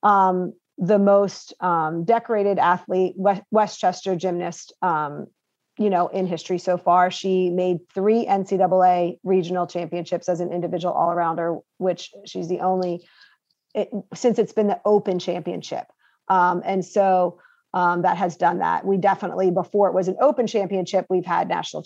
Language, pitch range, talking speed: English, 180-200 Hz, 155 wpm